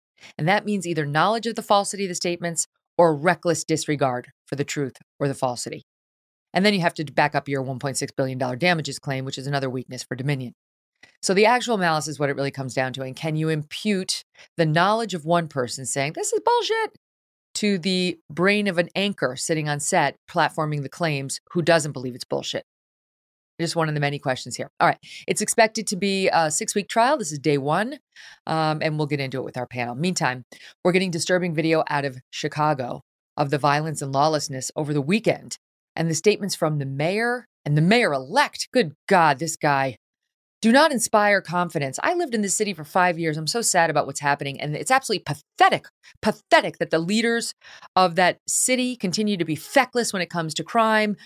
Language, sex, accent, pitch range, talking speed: English, female, American, 145-205 Hz, 210 wpm